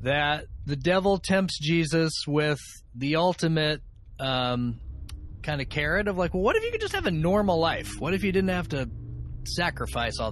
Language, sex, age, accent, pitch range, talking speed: English, male, 30-49, American, 120-180 Hz, 180 wpm